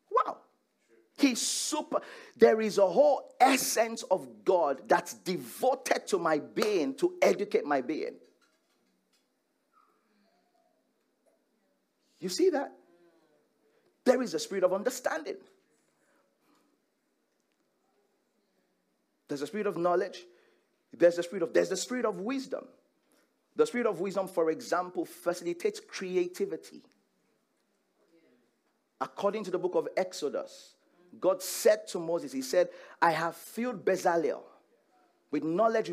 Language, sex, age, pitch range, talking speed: English, male, 50-69, 180-265 Hz, 110 wpm